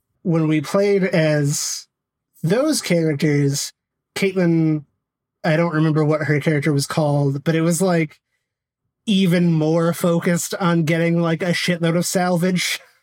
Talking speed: 135 wpm